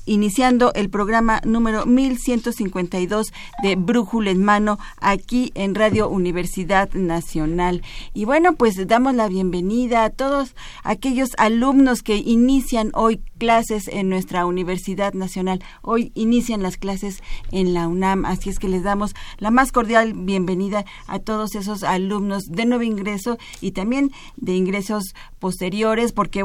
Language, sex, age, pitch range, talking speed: Spanish, female, 40-59, 185-225 Hz, 140 wpm